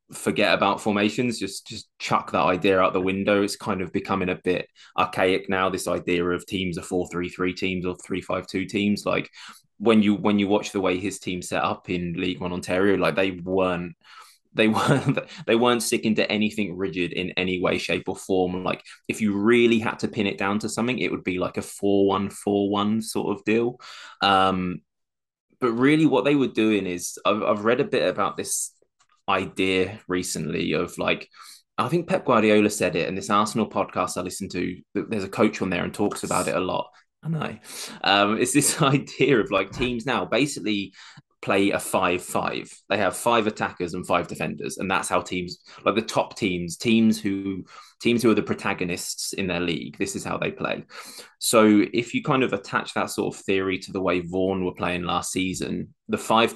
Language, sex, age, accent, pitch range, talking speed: English, male, 20-39, British, 90-110 Hz, 205 wpm